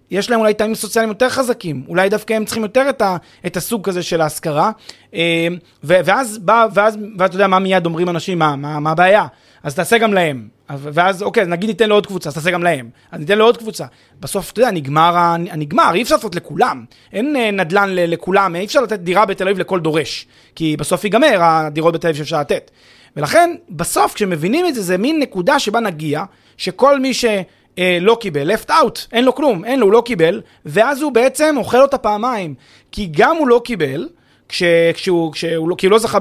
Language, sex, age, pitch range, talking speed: Hebrew, male, 30-49, 175-240 Hz, 195 wpm